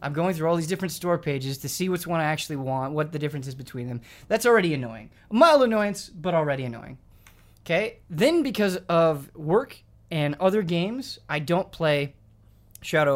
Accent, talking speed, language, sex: American, 190 wpm, English, male